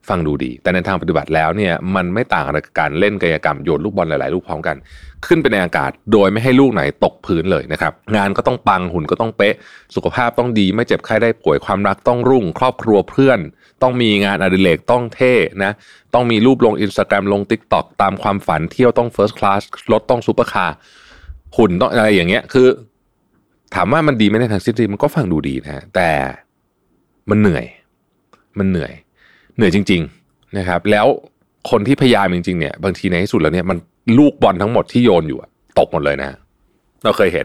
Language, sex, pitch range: Thai, male, 90-120 Hz